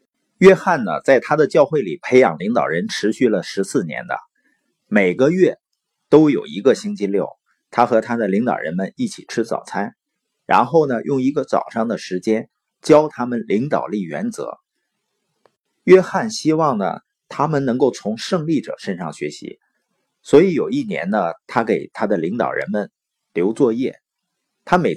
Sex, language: male, Chinese